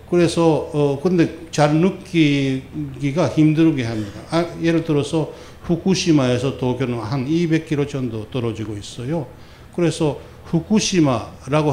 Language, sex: Korean, male